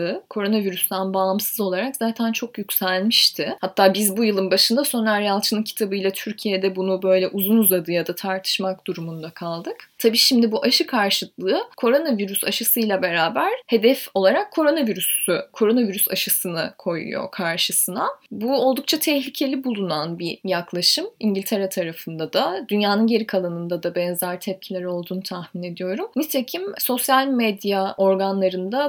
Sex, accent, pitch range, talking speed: female, native, 190-235 Hz, 125 wpm